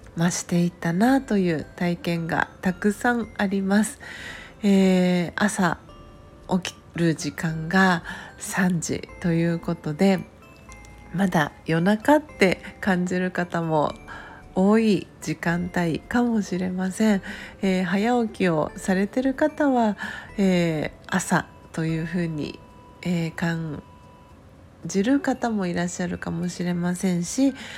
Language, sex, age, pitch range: Japanese, female, 40-59, 165-205 Hz